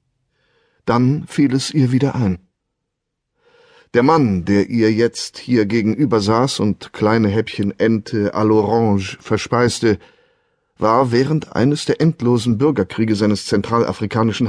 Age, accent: 30-49, German